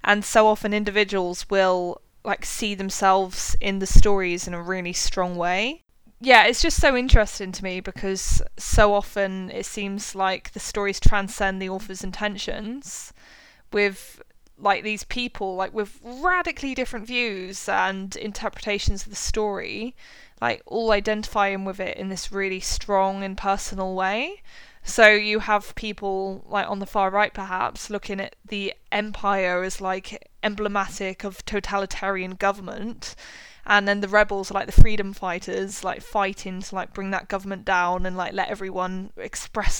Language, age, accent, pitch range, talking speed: English, 20-39, British, 190-210 Hz, 155 wpm